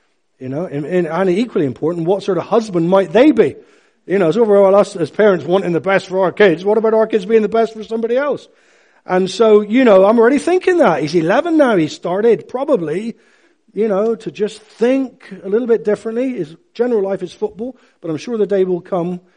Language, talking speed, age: English, 215 wpm, 50-69